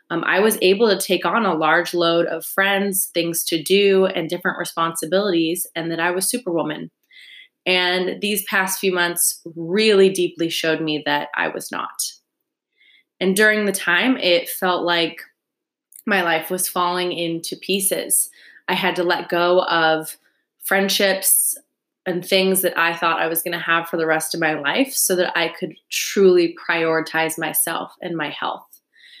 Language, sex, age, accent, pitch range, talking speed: English, female, 20-39, American, 165-195 Hz, 170 wpm